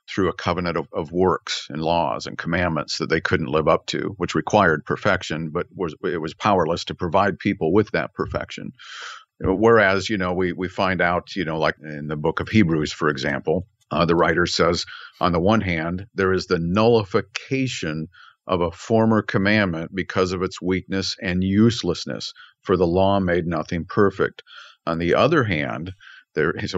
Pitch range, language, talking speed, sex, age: 90-110 Hz, English, 185 wpm, male, 50-69